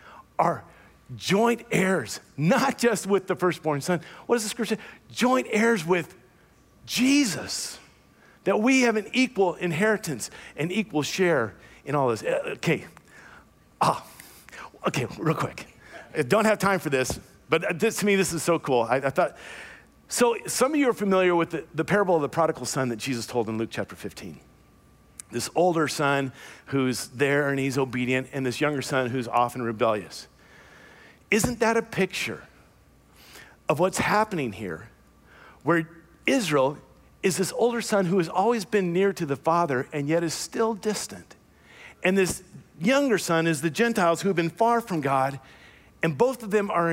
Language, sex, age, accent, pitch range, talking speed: English, male, 50-69, American, 140-205 Hz, 170 wpm